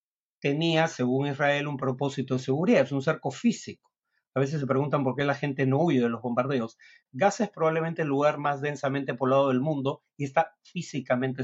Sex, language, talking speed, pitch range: male, Spanish, 195 wpm, 130-155 Hz